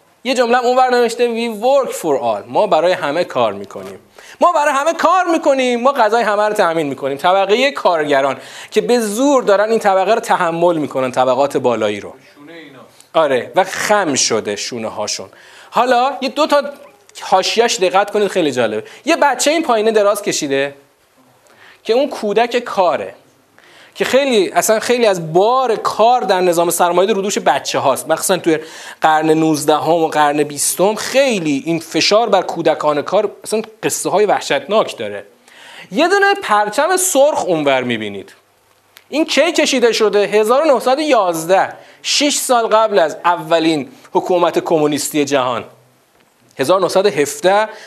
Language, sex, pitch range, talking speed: Persian, male, 160-255 Hz, 145 wpm